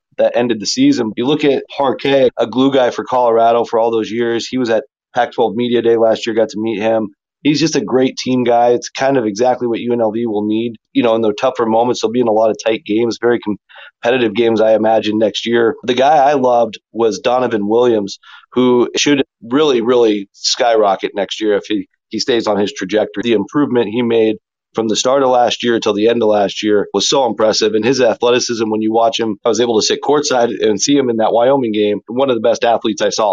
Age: 30-49